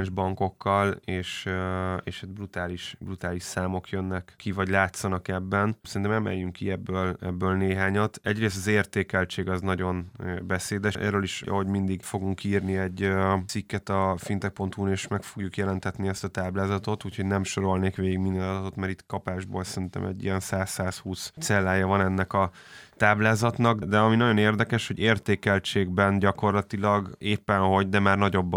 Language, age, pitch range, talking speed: Hungarian, 20-39, 95-105 Hz, 150 wpm